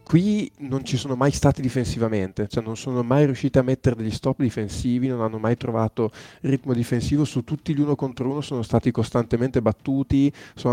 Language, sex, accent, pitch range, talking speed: Italian, male, native, 110-135 Hz, 190 wpm